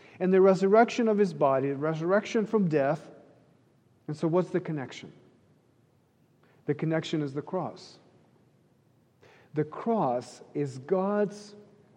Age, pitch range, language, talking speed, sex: 40-59, 140-190 Hz, English, 120 wpm, male